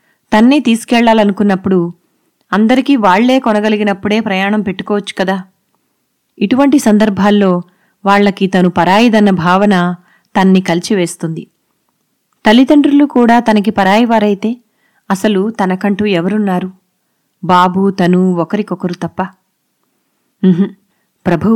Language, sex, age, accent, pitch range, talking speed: Telugu, female, 20-39, native, 180-215 Hz, 80 wpm